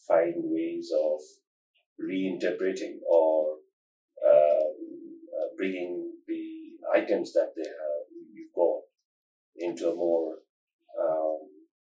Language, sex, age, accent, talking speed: English, male, 30-49, Indian, 90 wpm